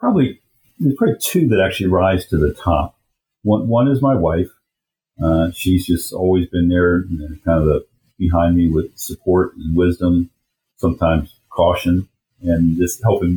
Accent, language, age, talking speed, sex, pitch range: American, English, 50-69, 165 wpm, male, 85-110 Hz